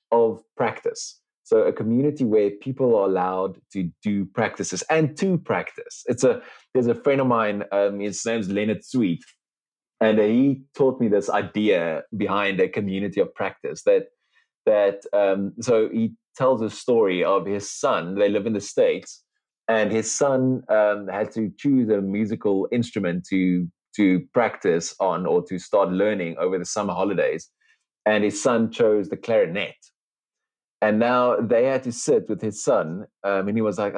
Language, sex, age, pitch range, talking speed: English, male, 30-49, 105-170 Hz, 170 wpm